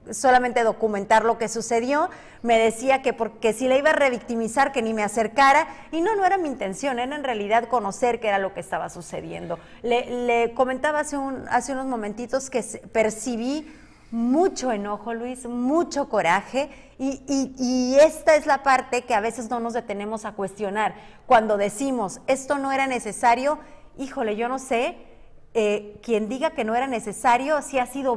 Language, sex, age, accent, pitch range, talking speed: Spanish, female, 40-59, Mexican, 225-275 Hz, 180 wpm